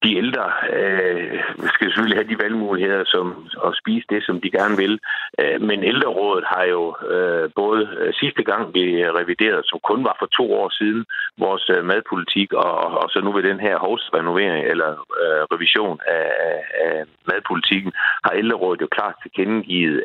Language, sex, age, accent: Danish, male, 60-79, native